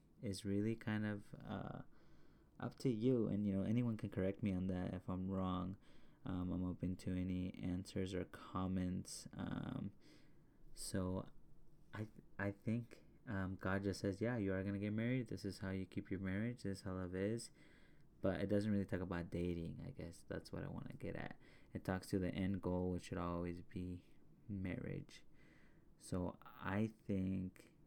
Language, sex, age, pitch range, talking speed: English, male, 20-39, 90-105 Hz, 185 wpm